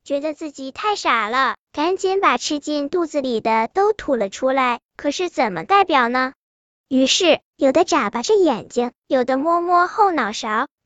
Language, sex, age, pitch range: Chinese, male, 10-29, 265-355 Hz